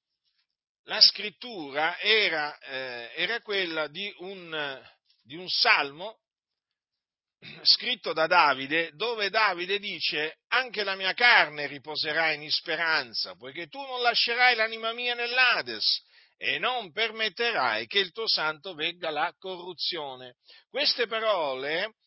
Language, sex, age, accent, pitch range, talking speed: Italian, male, 50-69, native, 160-240 Hz, 115 wpm